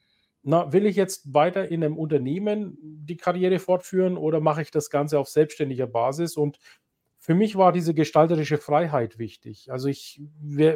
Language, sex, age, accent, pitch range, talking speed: German, male, 40-59, German, 150-185 Hz, 165 wpm